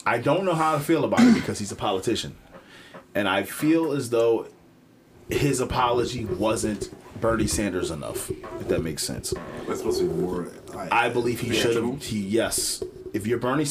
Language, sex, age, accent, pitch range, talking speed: English, male, 30-49, American, 95-120 Hz, 175 wpm